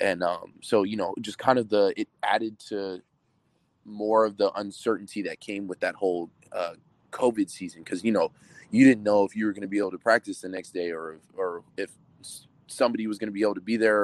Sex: male